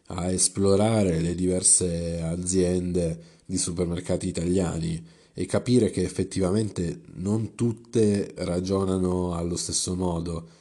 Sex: male